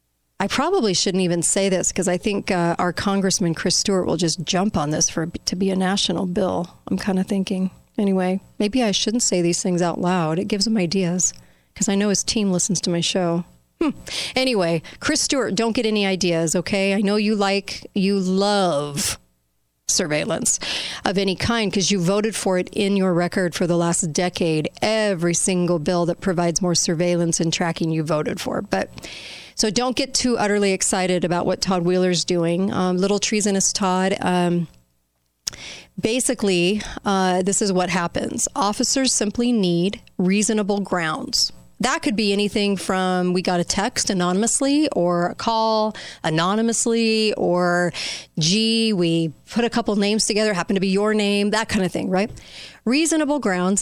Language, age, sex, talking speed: English, 40-59, female, 175 wpm